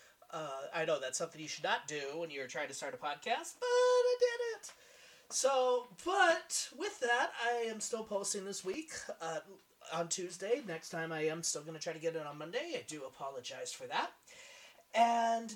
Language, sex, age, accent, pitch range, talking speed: English, male, 30-49, American, 205-315 Hz, 200 wpm